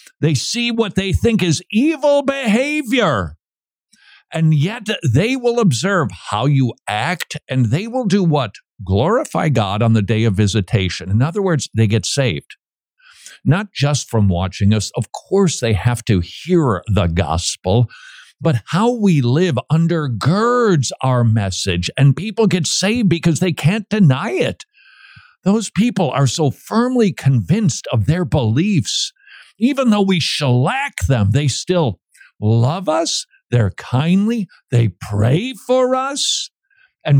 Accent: American